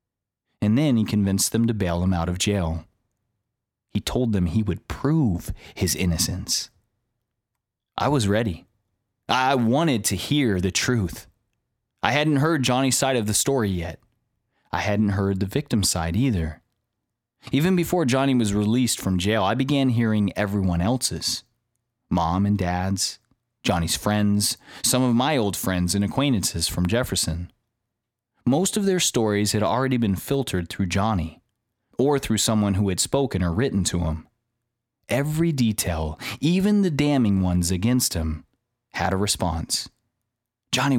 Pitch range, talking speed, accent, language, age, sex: 95-125 Hz, 150 wpm, American, English, 30-49, male